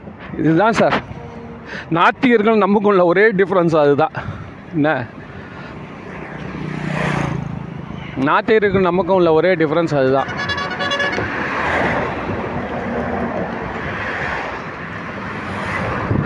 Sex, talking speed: male, 55 wpm